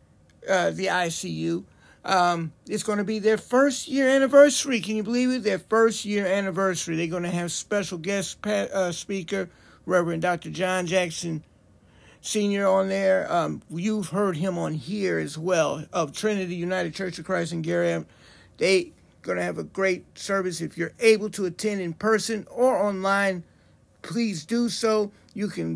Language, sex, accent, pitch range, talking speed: English, male, American, 160-200 Hz, 170 wpm